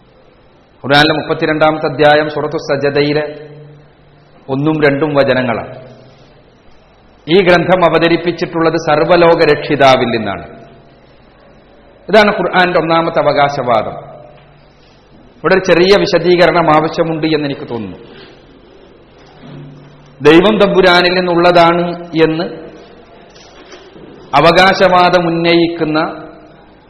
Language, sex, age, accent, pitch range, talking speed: Malayalam, male, 40-59, native, 145-175 Hz, 60 wpm